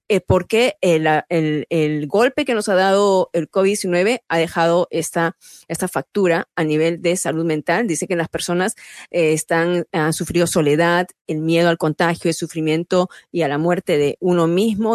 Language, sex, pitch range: Spanish, female, 165-210 Hz